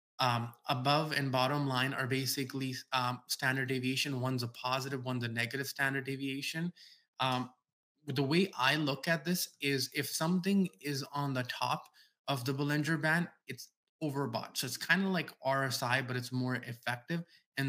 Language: English